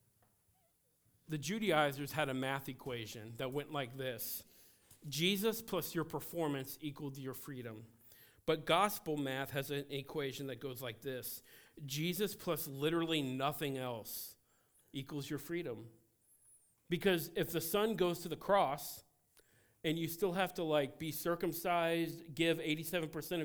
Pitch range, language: 140-185 Hz, English